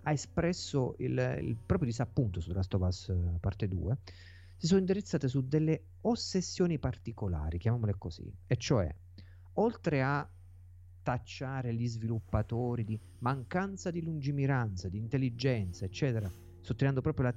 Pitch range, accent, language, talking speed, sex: 90-145 Hz, native, Italian, 125 wpm, male